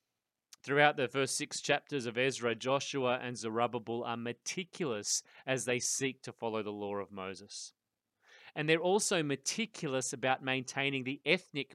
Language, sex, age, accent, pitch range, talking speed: English, male, 30-49, Australian, 125-160 Hz, 150 wpm